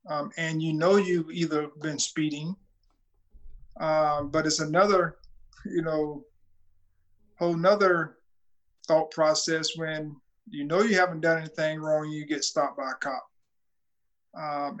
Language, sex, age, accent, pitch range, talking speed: English, male, 50-69, American, 150-170 Hz, 135 wpm